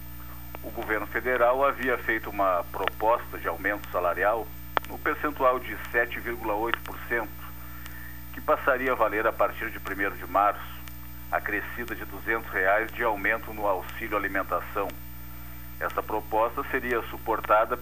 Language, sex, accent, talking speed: Portuguese, male, Brazilian, 125 wpm